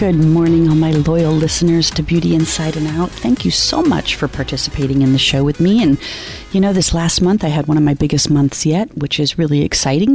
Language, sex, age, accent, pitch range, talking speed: English, female, 40-59, American, 135-165 Hz, 235 wpm